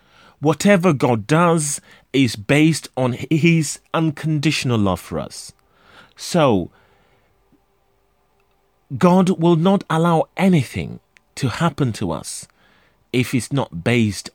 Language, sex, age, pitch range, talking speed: English, male, 30-49, 130-175 Hz, 105 wpm